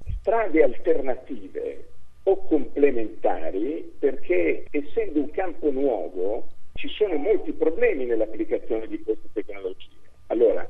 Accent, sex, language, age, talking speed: native, male, Italian, 50-69, 100 wpm